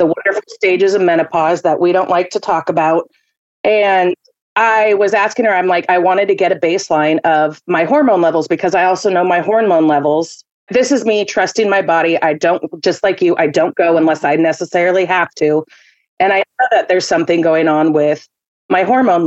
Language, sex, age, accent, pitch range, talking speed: English, female, 30-49, American, 165-210 Hz, 205 wpm